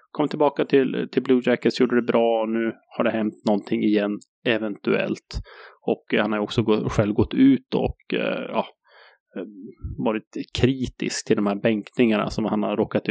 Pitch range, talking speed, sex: 105-120 Hz, 175 wpm, male